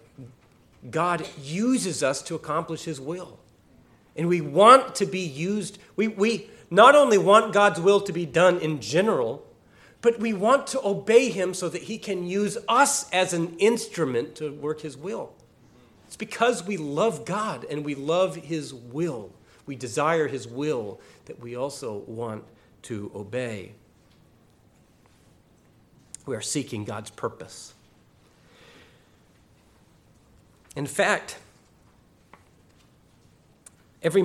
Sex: male